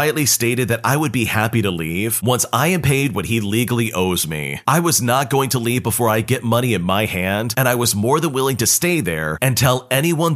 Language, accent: English, American